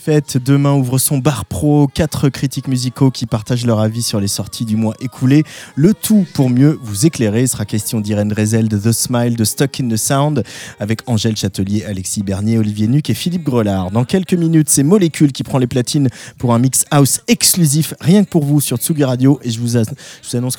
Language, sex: French, male